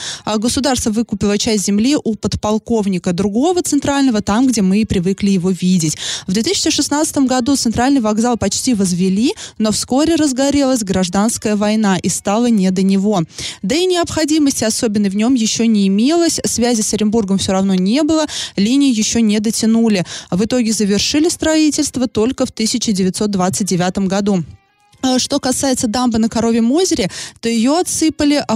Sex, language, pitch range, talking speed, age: female, Russian, 200-260 Hz, 150 wpm, 20-39